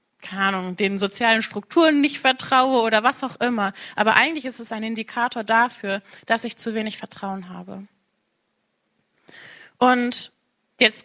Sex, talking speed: female, 130 wpm